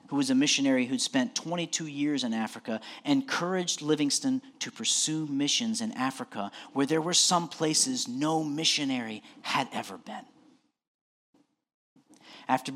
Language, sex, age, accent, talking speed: English, male, 40-59, American, 130 wpm